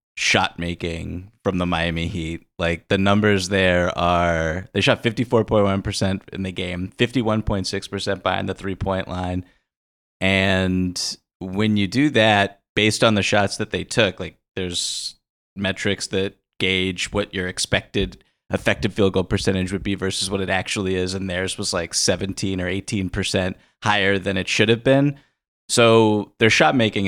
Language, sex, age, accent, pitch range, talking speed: English, male, 20-39, American, 95-105 Hz, 160 wpm